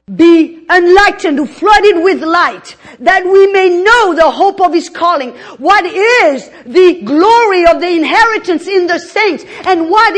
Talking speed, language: 155 wpm, English